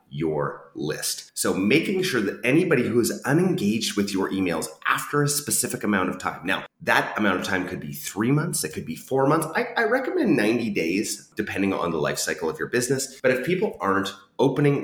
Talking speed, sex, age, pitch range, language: 205 wpm, male, 30-49, 90-135 Hz, English